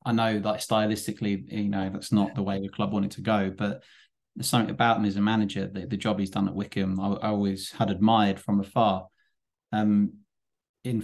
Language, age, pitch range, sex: English, 20-39, 100-110 Hz, male